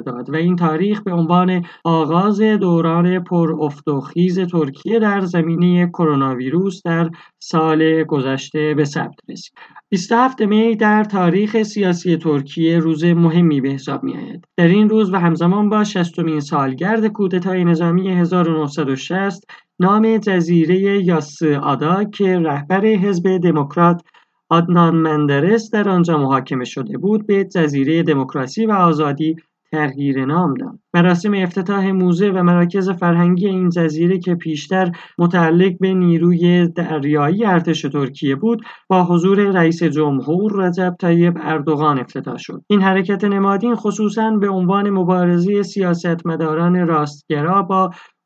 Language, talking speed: Persian, 125 wpm